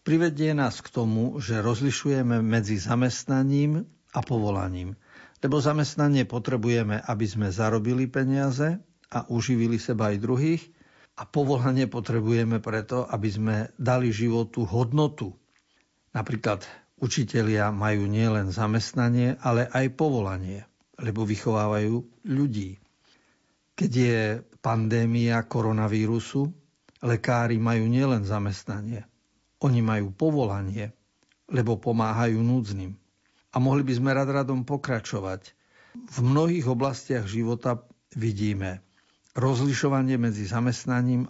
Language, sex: Slovak, male